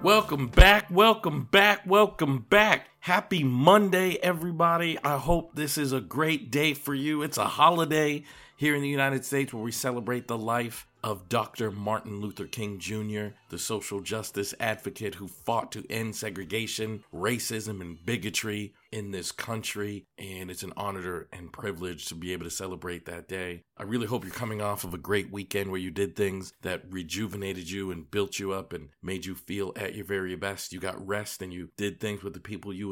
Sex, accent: male, American